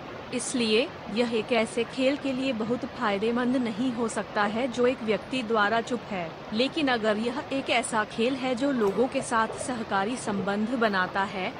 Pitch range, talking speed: 210-255 Hz, 175 wpm